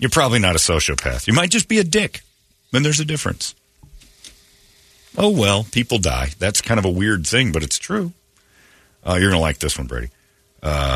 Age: 40-59